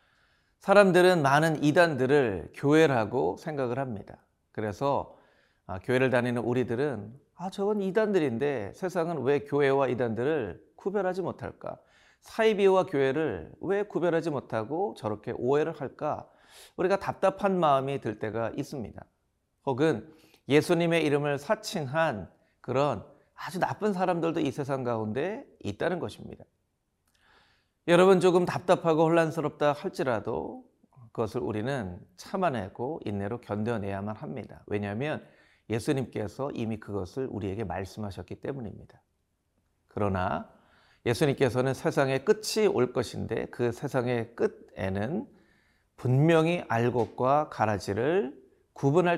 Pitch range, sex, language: 110-165 Hz, male, Korean